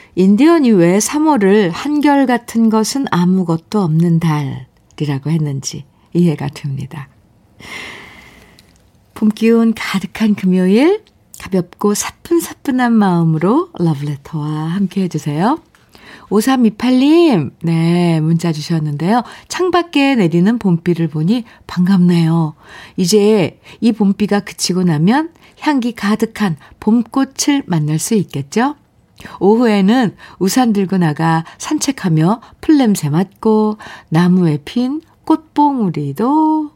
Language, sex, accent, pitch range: Korean, female, native, 165-245 Hz